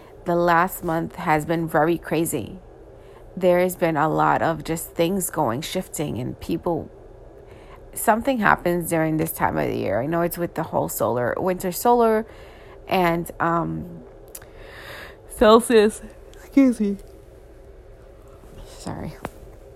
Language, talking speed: English, 130 wpm